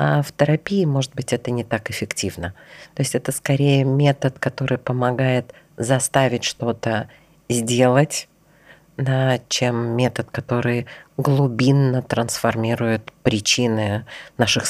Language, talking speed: Russian, 110 wpm